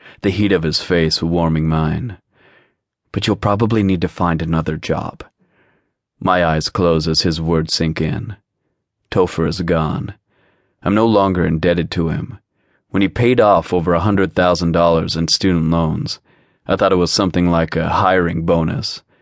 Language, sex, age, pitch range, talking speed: English, male, 30-49, 80-95 Hz, 155 wpm